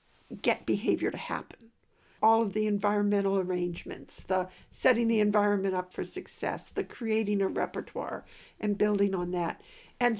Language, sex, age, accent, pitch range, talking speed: English, female, 60-79, American, 200-260 Hz, 145 wpm